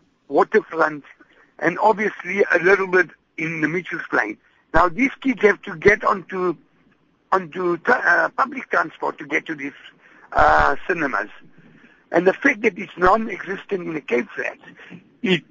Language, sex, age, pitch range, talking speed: English, male, 60-79, 170-220 Hz, 145 wpm